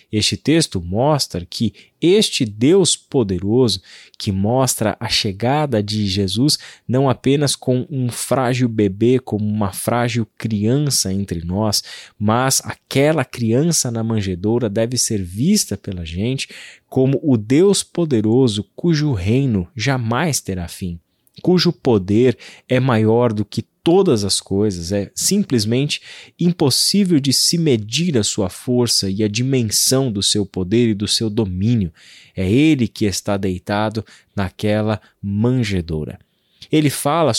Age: 20-39